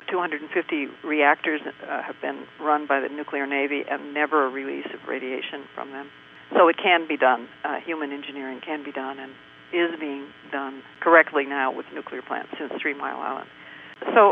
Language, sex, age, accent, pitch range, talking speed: English, female, 60-79, American, 140-200 Hz, 180 wpm